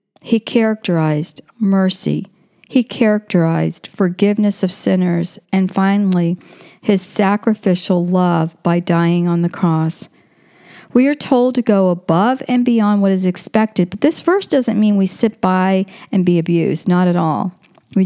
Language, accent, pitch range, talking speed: English, American, 180-215 Hz, 145 wpm